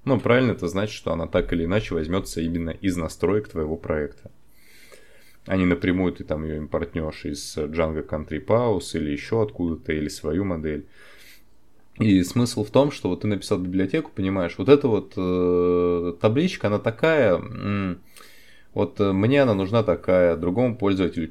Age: 20-39